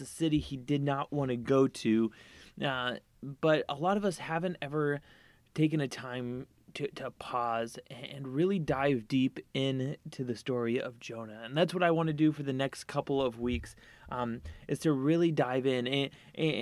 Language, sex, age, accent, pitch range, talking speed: English, male, 20-39, American, 120-150 Hz, 190 wpm